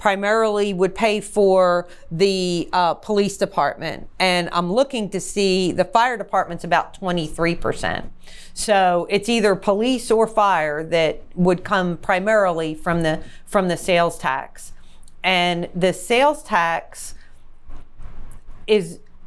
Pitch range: 170-205 Hz